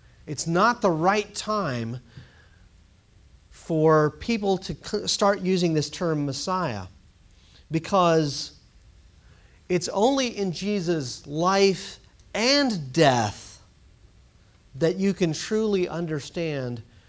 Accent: American